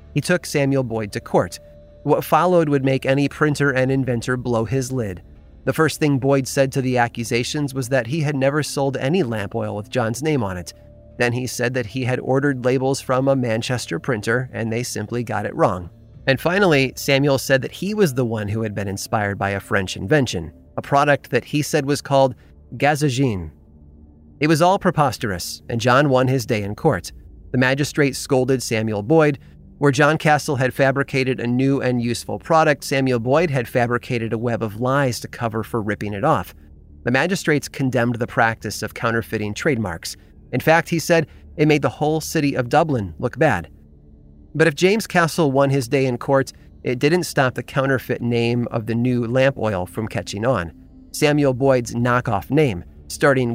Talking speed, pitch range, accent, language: 190 wpm, 110-140 Hz, American, English